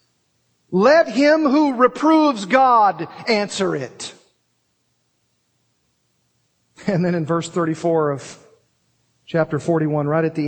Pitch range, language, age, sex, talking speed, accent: 140-180 Hz, English, 50-69, male, 105 wpm, American